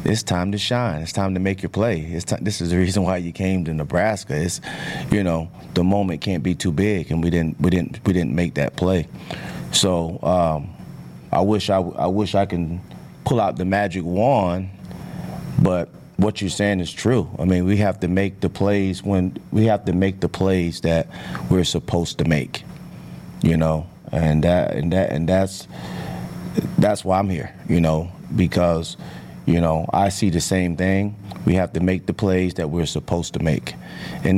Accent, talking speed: American, 200 wpm